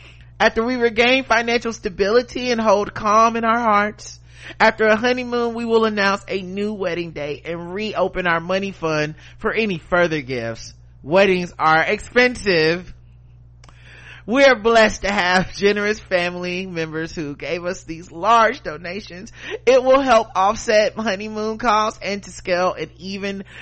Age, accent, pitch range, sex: 30-49, American, 165-220 Hz, male